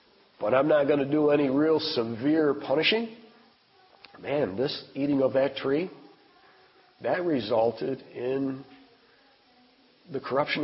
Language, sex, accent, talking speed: English, male, American, 120 wpm